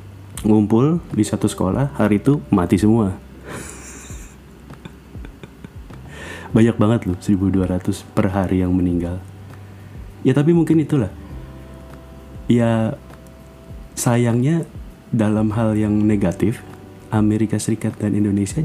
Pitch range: 90-115 Hz